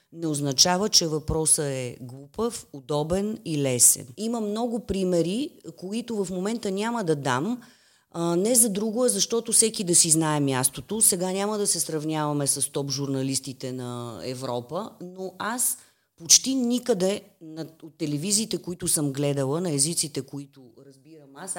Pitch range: 145-190 Hz